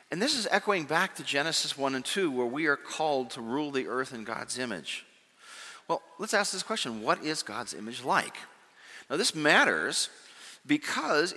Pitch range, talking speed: 130-190 Hz, 185 wpm